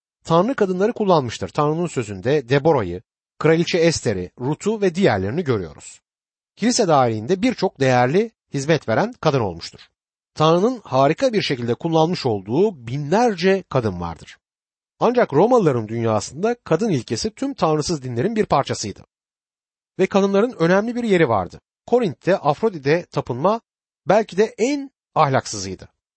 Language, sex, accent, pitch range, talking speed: Turkish, male, native, 130-200 Hz, 120 wpm